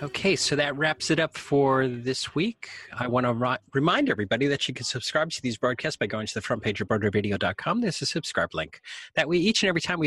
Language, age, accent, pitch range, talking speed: English, 30-49, American, 110-165 Hz, 245 wpm